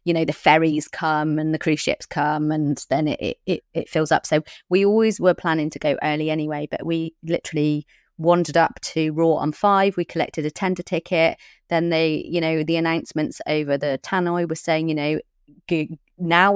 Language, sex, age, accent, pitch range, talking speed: English, female, 30-49, British, 150-175 Hz, 190 wpm